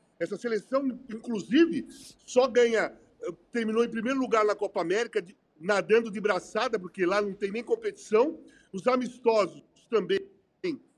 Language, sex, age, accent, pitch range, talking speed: Portuguese, male, 50-69, Brazilian, 195-275 Hz, 130 wpm